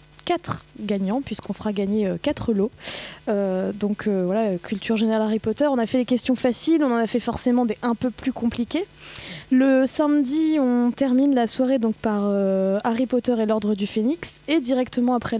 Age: 20-39